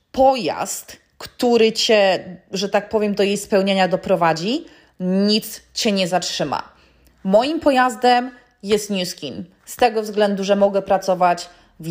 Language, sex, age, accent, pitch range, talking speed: Polish, female, 20-39, native, 185-230 Hz, 125 wpm